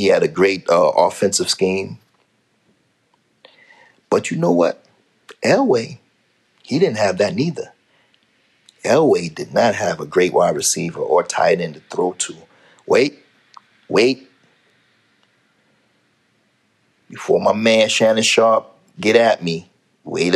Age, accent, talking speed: 40-59, American, 125 wpm